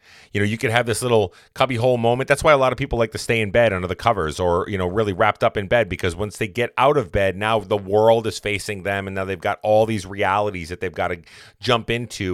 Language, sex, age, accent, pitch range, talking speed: English, male, 30-49, American, 95-125 Hz, 275 wpm